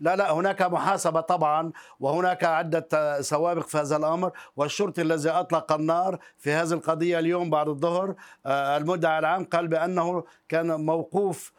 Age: 50-69